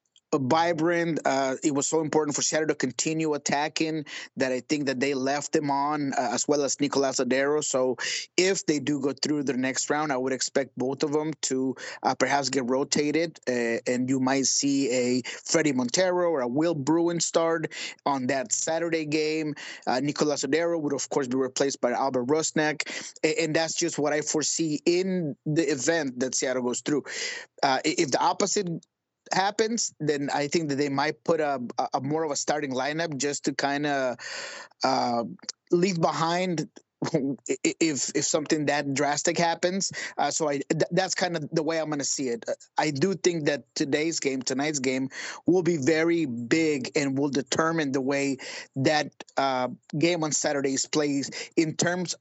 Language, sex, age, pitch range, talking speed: English, male, 20-39, 140-165 Hz, 185 wpm